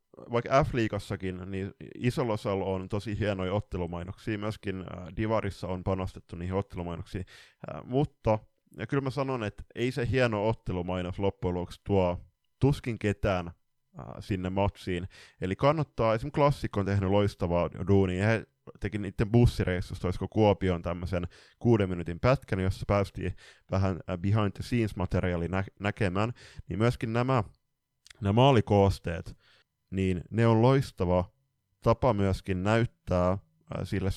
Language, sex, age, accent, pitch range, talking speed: Finnish, male, 20-39, native, 95-120 Hz, 130 wpm